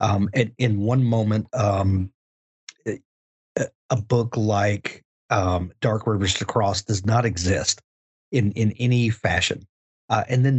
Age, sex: 40-59, male